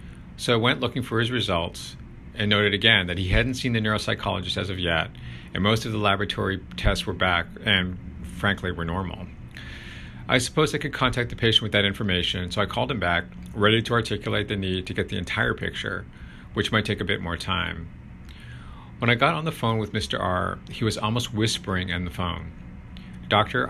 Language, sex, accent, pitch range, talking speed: English, male, American, 90-115 Hz, 205 wpm